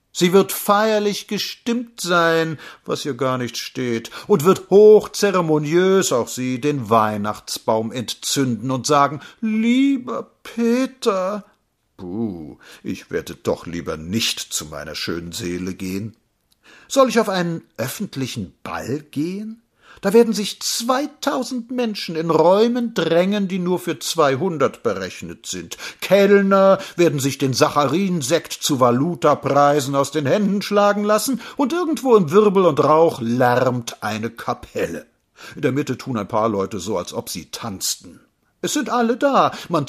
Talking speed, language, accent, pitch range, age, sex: 140 wpm, German, German, 130-205 Hz, 50-69, male